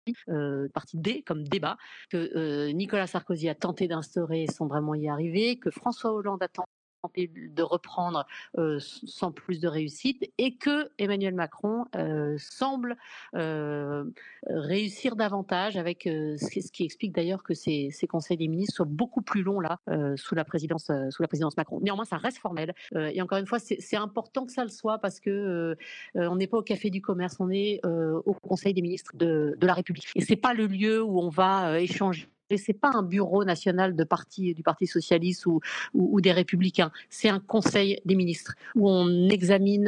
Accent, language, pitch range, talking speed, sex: French, French, 170-215 Hz, 195 wpm, female